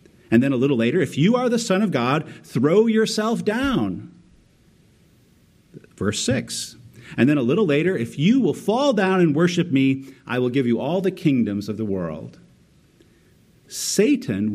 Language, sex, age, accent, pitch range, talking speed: English, male, 50-69, American, 115-190 Hz, 170 wpm